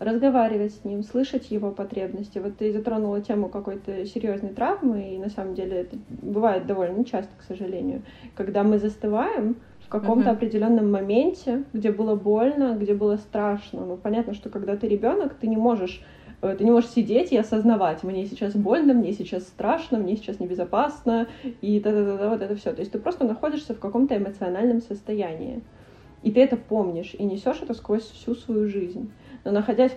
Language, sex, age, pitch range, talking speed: Russian, female, 20-39, 205-240 Hz, 170 wpm